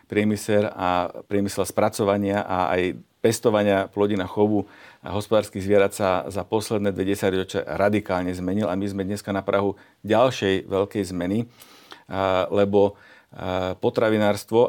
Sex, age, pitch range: male, 50-69, 100-120 Hz